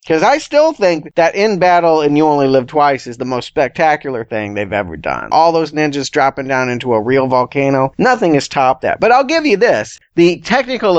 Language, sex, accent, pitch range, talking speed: English, male, American, 125-170 Hz, 220 wpm